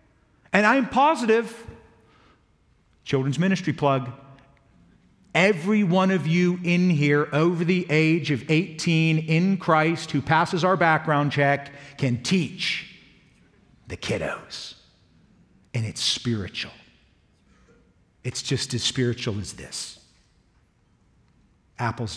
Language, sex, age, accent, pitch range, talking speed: English, male, 50-69, American, 125-195 Hz, 105 wpm